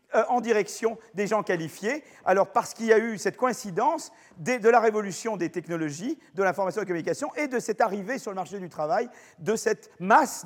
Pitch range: 175-235 Hz